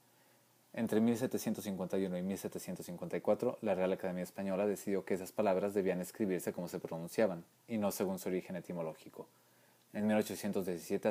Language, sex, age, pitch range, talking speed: English, male, 30-49, 95-110 Hz, 135 wpm